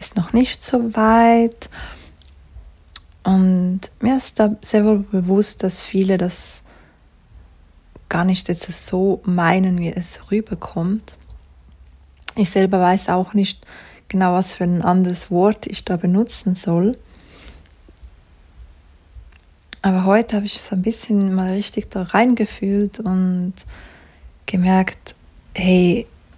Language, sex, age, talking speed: German, female, 20-39, 115 wpm